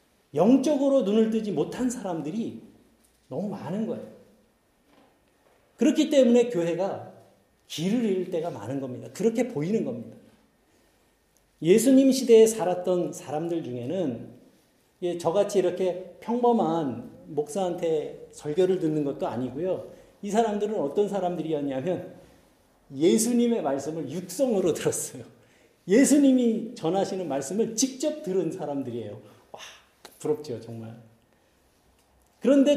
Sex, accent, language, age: male, native, Korean, 40-59